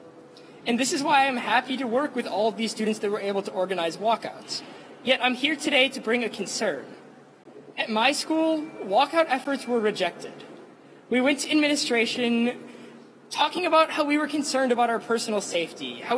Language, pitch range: English, 220-275 Hz